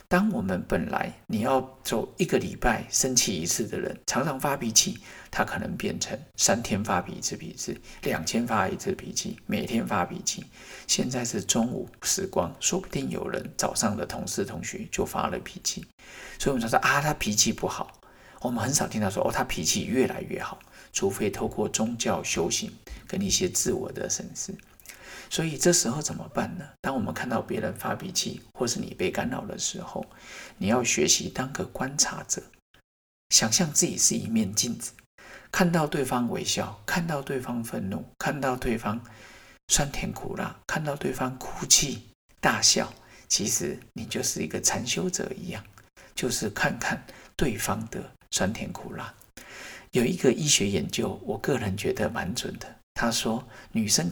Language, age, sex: Chinese, 50-69, male